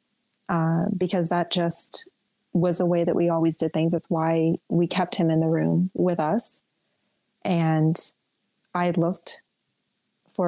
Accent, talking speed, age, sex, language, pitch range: American, 150 wpm, 30-49, female, English, 165-190 Hz